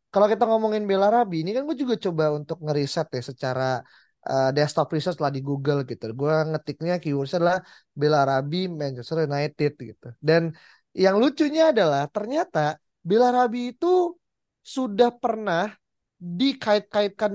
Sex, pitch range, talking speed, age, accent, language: male, 160-215 Hz, 140 wpm, 20-39, native, Indonesian